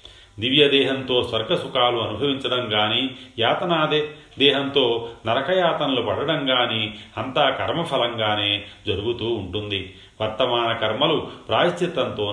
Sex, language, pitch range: male, Telugu, 105-130 Hz